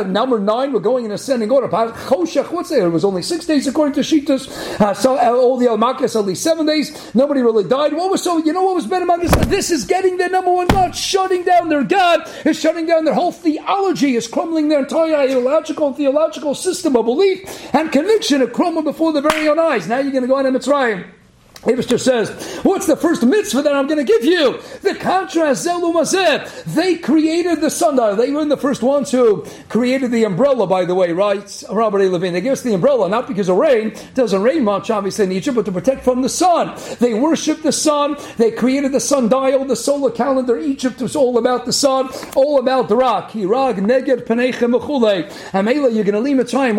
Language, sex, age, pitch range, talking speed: English, male, 50-69, 235-310 Hz, 215 wpm